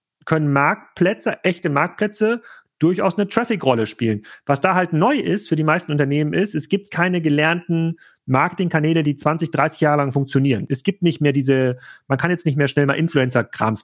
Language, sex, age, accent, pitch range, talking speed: German, male, 40-59, German, 140-180 Hz, 180 wpm